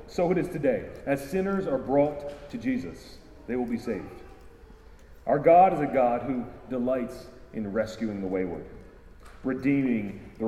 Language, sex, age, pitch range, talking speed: English, male, 30-49, 110-155 Hz, 155 wpm